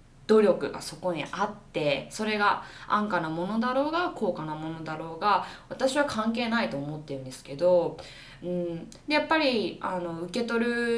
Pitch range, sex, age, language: 170-245 Hz, female, 20-39, Japanese